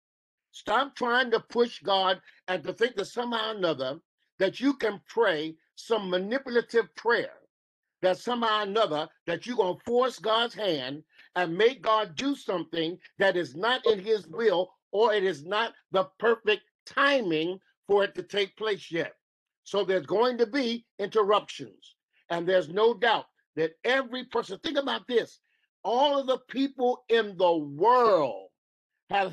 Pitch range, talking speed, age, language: 180-240 Hz, 160 wpm, 50-69, English